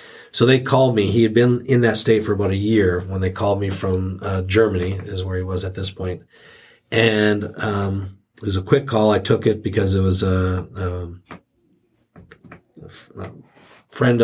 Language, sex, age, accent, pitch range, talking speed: English, male, 40-59, American, 95-110 Hz, 190 wpm